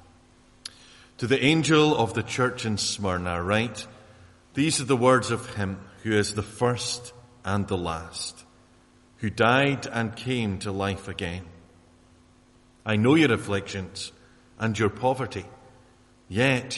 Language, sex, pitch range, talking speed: English, male, 95-125 Hz, 130 wpm